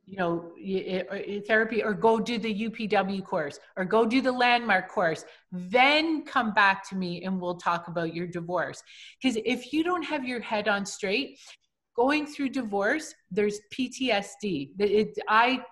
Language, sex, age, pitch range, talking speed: English, female, 30-49, 190-240 Hz, 160 wpm